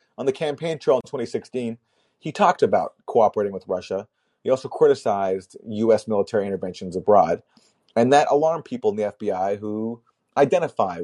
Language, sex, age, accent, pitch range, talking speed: English, male, 30-49, American, 105-155 Hz, 150 wpm